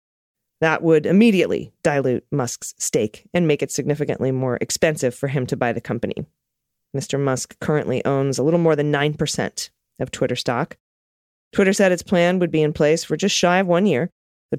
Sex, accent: female, American